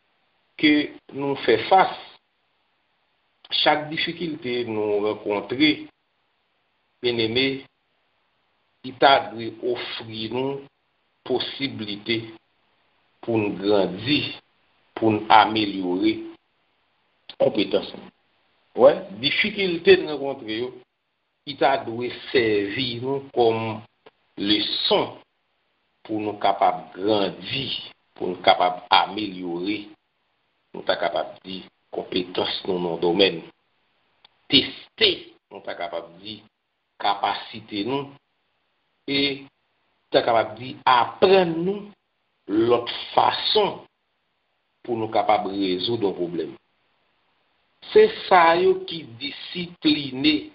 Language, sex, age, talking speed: English, male, 60-79, 90 wpm